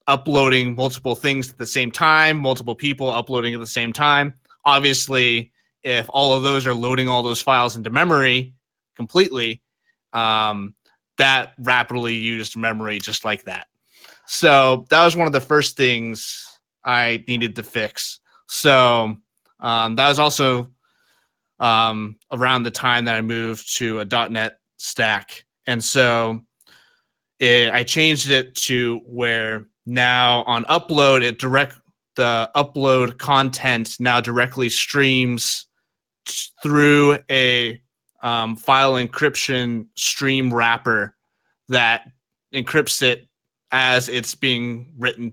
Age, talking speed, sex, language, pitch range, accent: 30-49, 125 wpm, male, English, 115-135 Hz, American